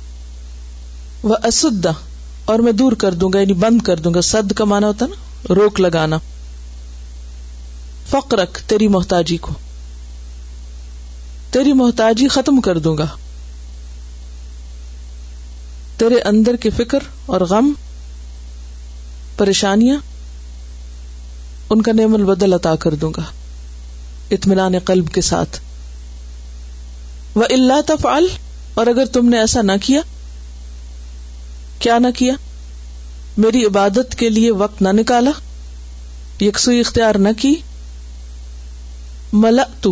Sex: female